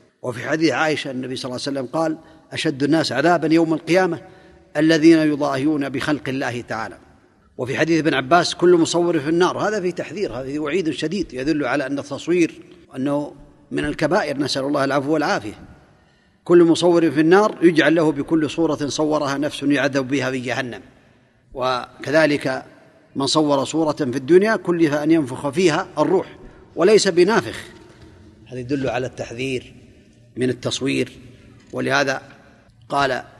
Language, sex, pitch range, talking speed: Arabic, male, 130-170 Hz, 140 wpm